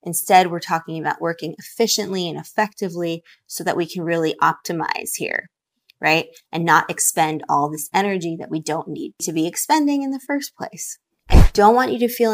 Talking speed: 190 wpm